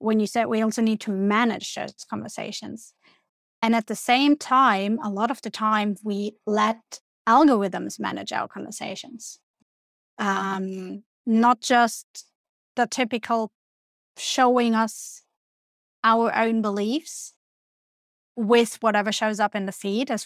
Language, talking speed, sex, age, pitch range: English, 130 wpm, female, 30-49, 210-250 Hz